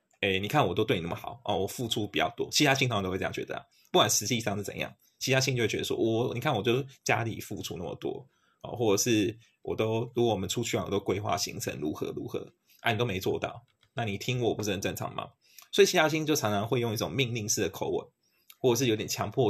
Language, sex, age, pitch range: Chinese, male, 20-39, 105-135 Hz